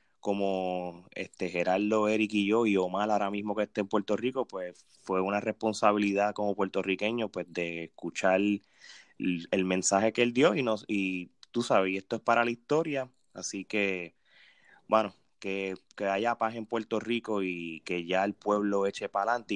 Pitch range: 100-125 Hz